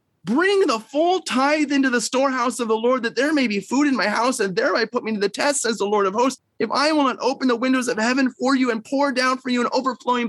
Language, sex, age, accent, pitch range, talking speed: English, male, 30-49, American, 220-285 Hz, 280 wpm